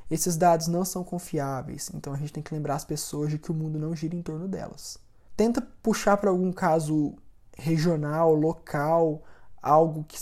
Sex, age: male, 20-39